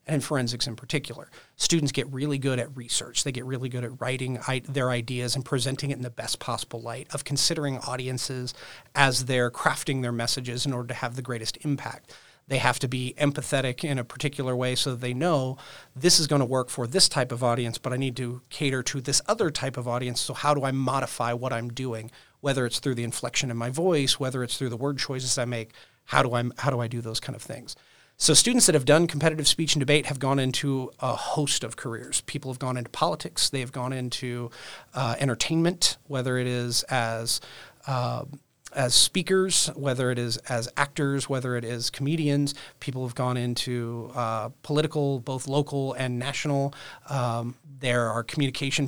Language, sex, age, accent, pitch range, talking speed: English, male, 40-59, American, 125-140 Hz, 205 wpm